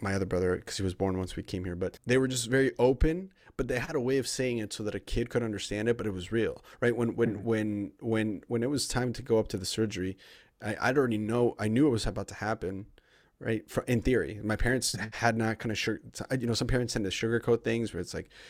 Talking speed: 275 wpm